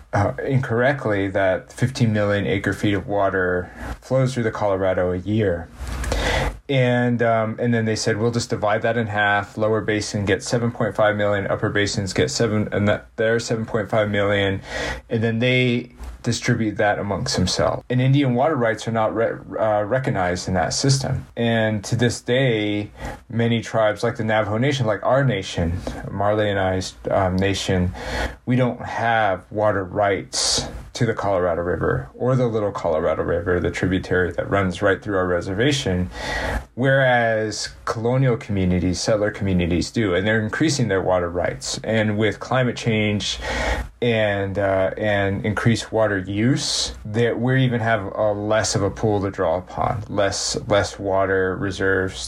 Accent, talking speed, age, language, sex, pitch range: American, 165 wpm, 30-49, English, male, 95-120 Hz